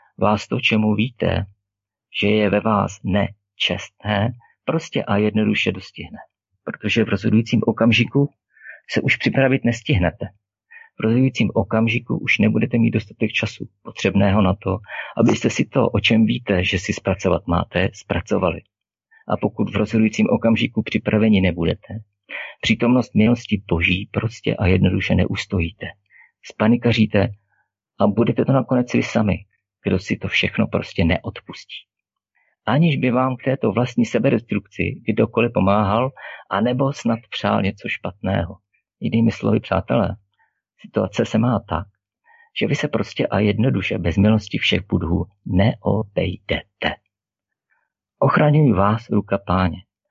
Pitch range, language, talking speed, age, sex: 100-115 Hz, Czech, 125 wpm, 50-69, male